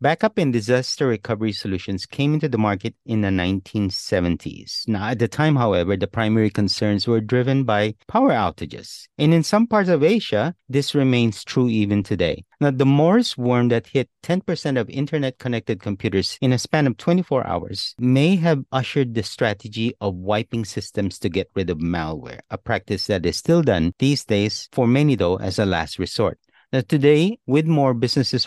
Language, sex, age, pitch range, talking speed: English, male, 40-59, 100-135 Hz, 175 wpm